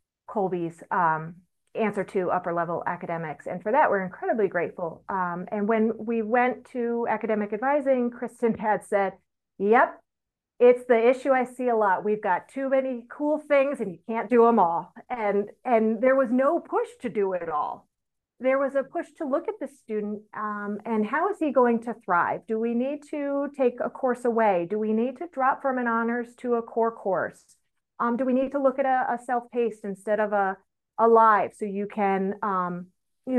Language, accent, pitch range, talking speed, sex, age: English, American, 190-245 Hz, 200 wpm, female, 40-59